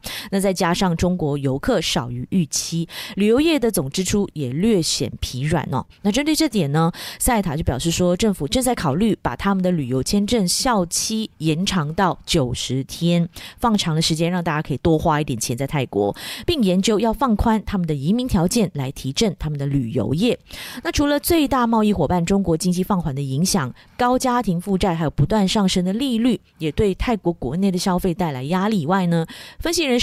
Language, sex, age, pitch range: Chinese, female, 20-39, 160-220 Hz